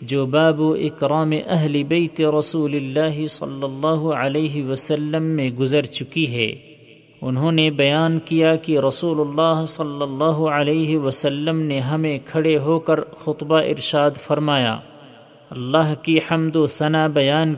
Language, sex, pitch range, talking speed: Urdu, male, 140-160 Hz, 140 wpm